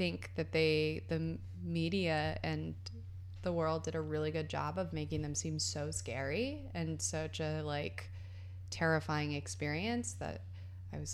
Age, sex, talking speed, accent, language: 20-39, female, 150 wpm, American, English